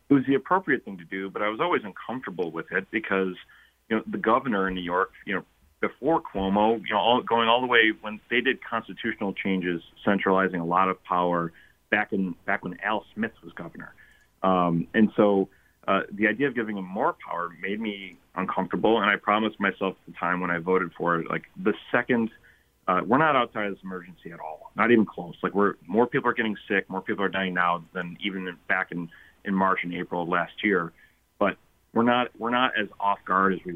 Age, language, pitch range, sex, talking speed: 30-49, English, 90-105 Hz, male, 220 wpm